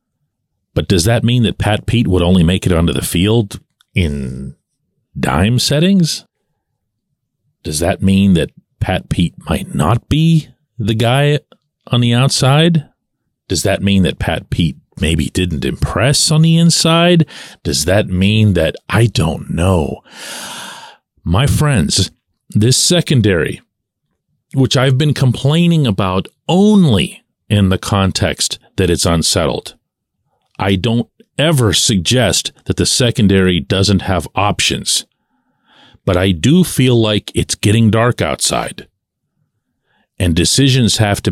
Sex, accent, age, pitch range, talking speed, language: male, American, 40-59, 90-125 Hz, 130 wpm, English